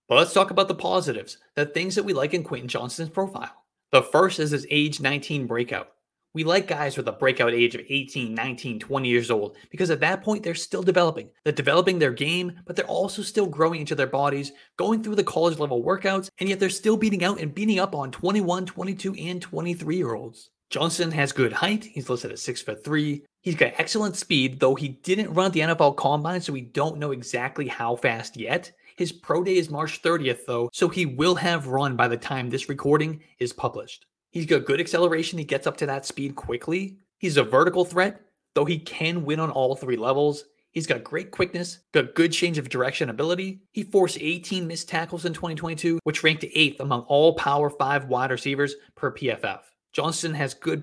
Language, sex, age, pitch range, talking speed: English, male, 30-49, 140-180 Hz, 205 wpm